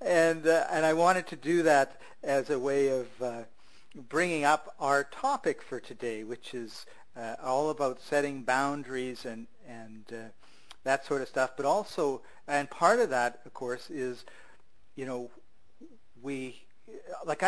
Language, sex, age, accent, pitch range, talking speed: English, male, 50-69, American, 120-140 Hz, 160 wpm